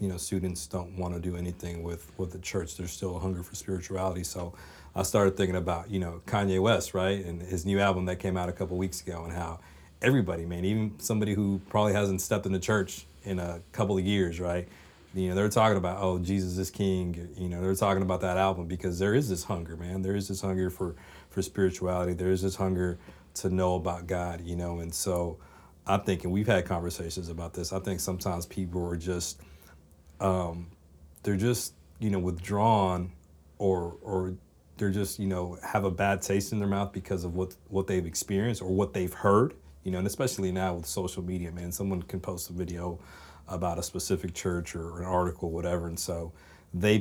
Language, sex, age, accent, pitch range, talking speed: English, male, 40-59, American, 85-95 Hz, 215 wpm